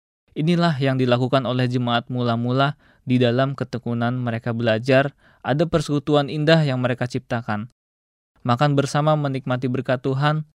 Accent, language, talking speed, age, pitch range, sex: native, Indonesian, 125 wpm, 20-39, 110-135 Hz, male